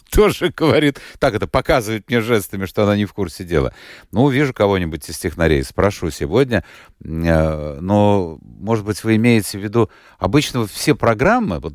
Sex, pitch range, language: male, 80-120 Hz, Russian